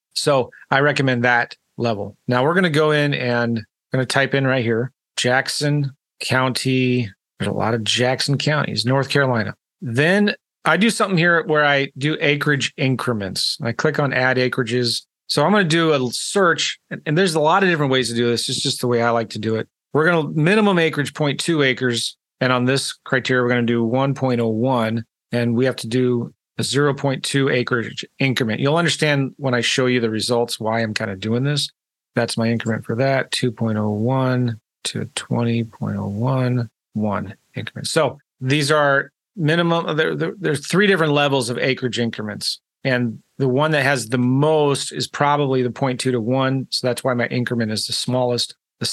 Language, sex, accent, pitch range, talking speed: English, male, American, 120-145 Hz, 190 wpm